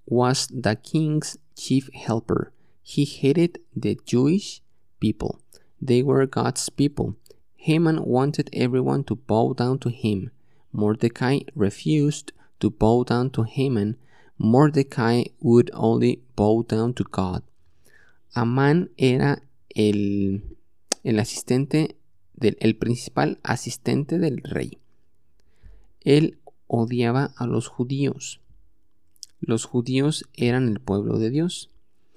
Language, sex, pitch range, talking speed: English, male, 105-140 Hz, 110 wpm